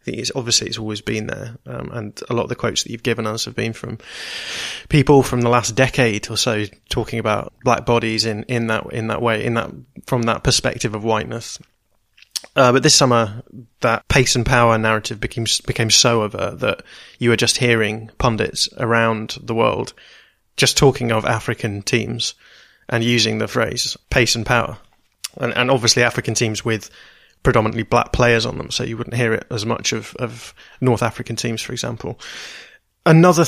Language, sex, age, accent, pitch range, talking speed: English, male, 20-39, British, 110-125 Hz, 190 wpm